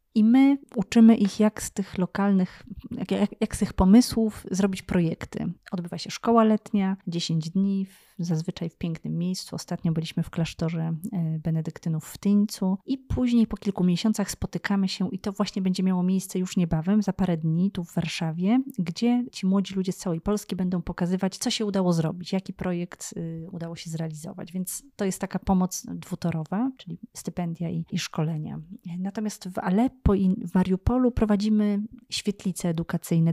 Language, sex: Polish, female